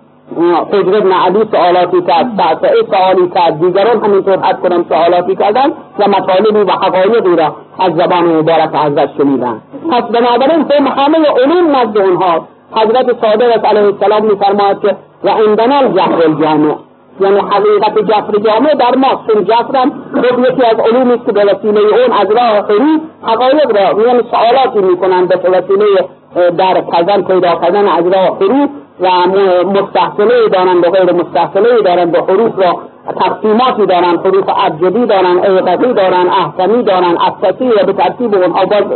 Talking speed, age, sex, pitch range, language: 135 wpm, 50-69, female, 185-255 Hz, Persian